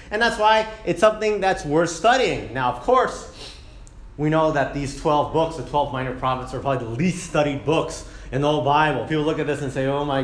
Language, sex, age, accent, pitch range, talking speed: English, male, 30-49, American, 125-160 Hz, 230 wpm